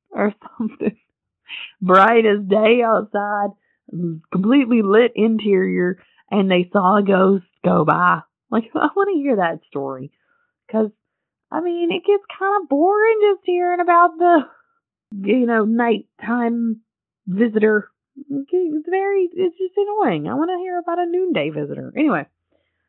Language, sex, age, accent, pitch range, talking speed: English, female, 30-49, American, 170-240 Hz, 140 wpm